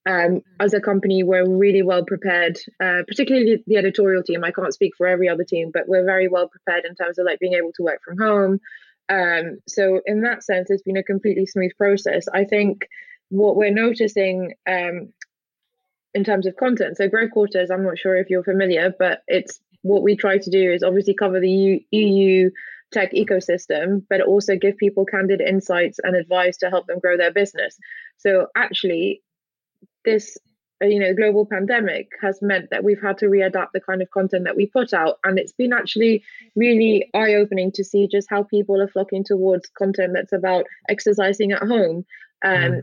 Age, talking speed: 20-39, 190 wpm